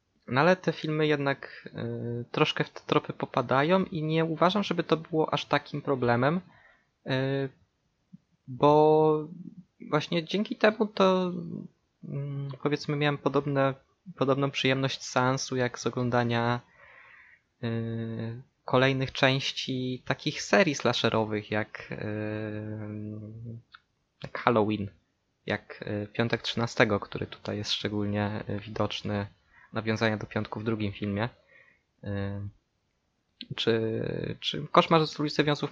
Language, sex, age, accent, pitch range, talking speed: Polish, male, 20-39, native, 110-150 Hz, 100 wpm